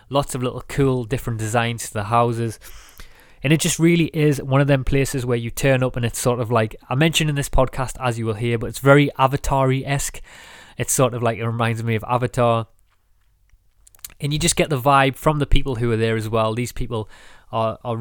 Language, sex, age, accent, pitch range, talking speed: English, male, 20-39, British, 115-135 Hz, 225 wpm